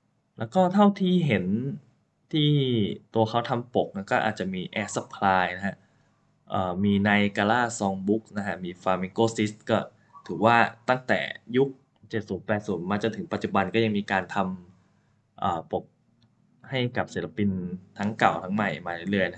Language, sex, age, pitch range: Thai, male, 20-39, 100-125 Hz